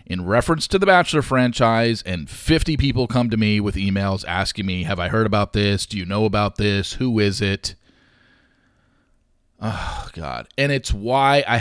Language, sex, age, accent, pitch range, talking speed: English, male, 40-59, American, 105-140 Hz, 180 wpm